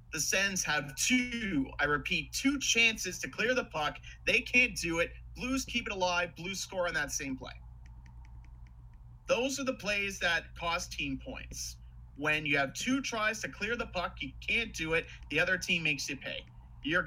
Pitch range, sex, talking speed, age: 135-180 Hz, male, 190 wpm, 30-49